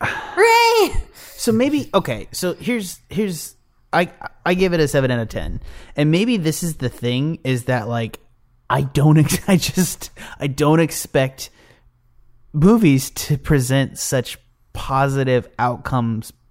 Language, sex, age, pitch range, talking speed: English, male, 30-49, 120-155 Hz, 135 wpm